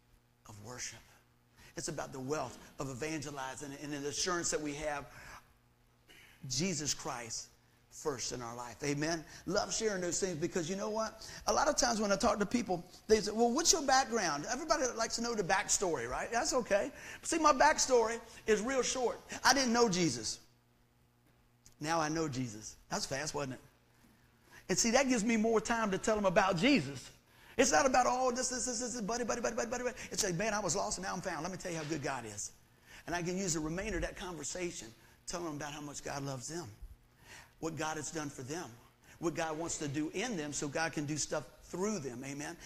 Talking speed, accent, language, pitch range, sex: 215 wpm, American, English, 140-230 Hz, male